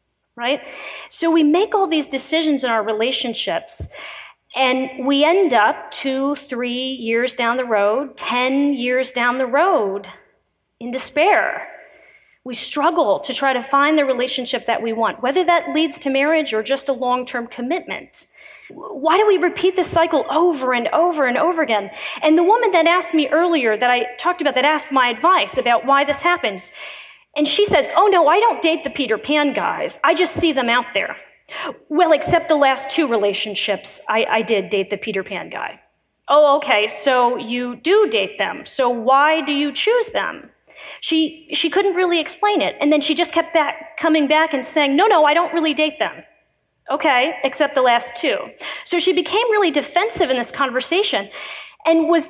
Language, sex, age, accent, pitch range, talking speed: English, female, 30-49, American, 250-330 Hz, 185 wpm